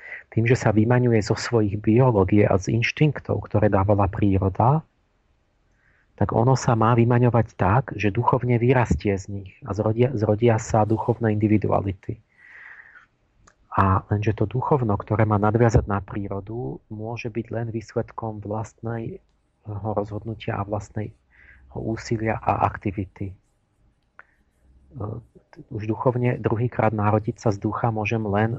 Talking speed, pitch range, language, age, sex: 125 wpm, 105-120 Hz, Slovak, 40-59, male